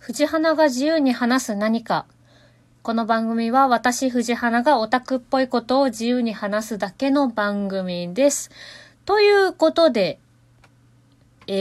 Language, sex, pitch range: Japanese, female, 160-245 Hz